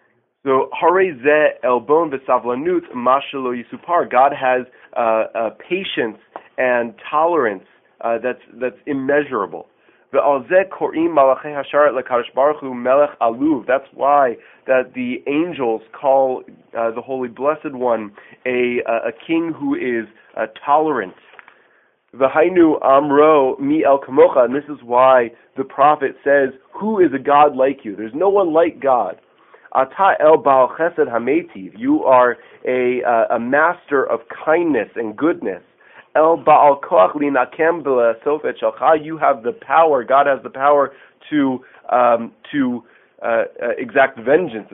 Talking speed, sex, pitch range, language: 135 wpm, male, 125-160 Hz, English